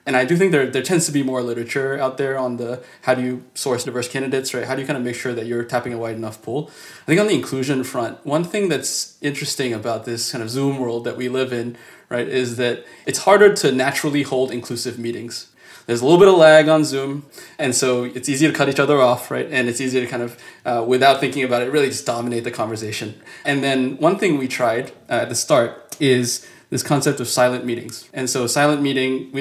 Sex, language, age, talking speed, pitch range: male, English, 20-39, 245 wpm, 120-140 Hz